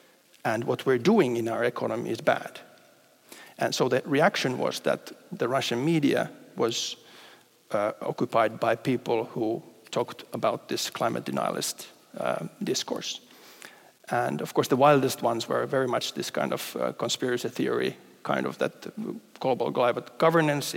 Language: English